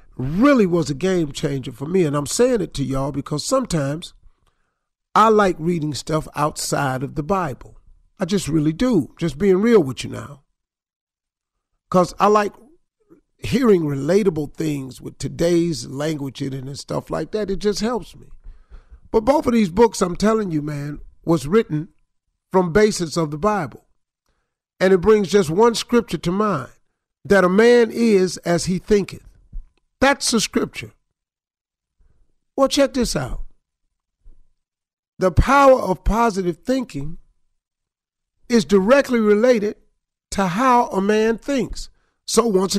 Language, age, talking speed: English, 50-69, 145 wpm